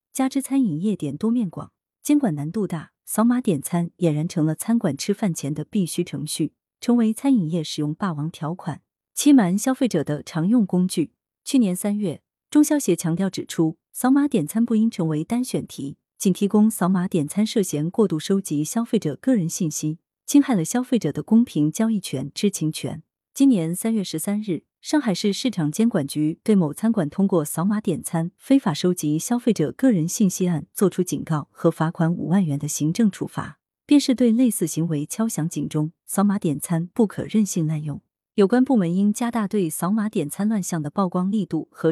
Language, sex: Chinese, female